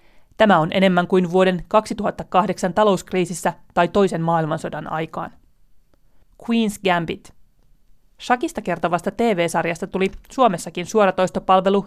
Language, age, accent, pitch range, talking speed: Finnish, 30-49, native, 170-200 Hz, 95 wpm